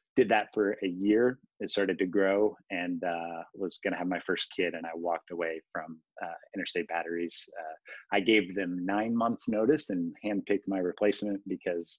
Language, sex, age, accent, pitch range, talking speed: English, male, 30-49, American, 90-110 Hz, 190 wpm